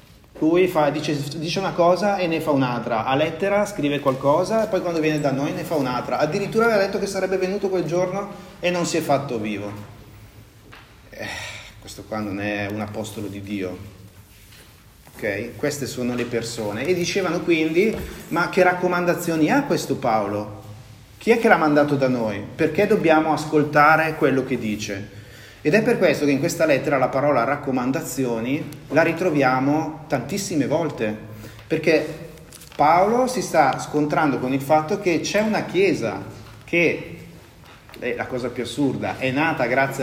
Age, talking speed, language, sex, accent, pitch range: 30-49, 165 wpm, Italian, male, native, 120-165 Hz